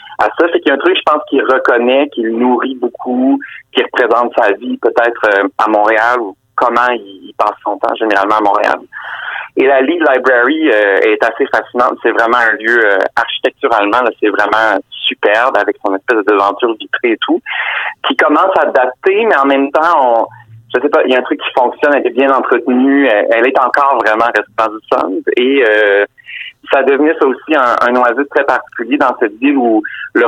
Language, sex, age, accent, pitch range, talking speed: French, male, 30-49, French, 110-155 Hz, 205 wpm